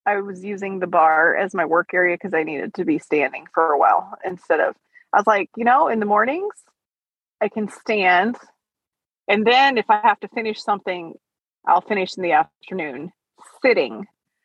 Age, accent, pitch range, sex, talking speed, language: 30-49, American, 185-235 Hz, female, 185 wpm, English